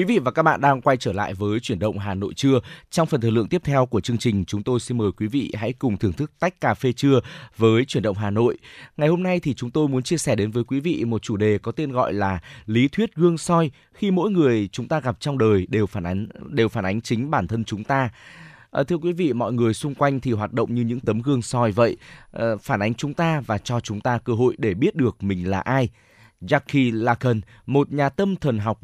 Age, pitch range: 20-39, 110-145 Hz